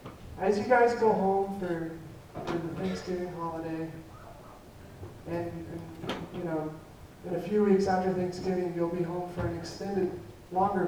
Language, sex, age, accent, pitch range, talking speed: English, male, 30-49, American, 160-190 Hz, 145 wpm